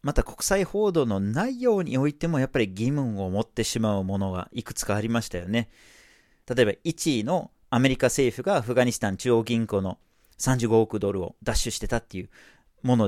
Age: 40-59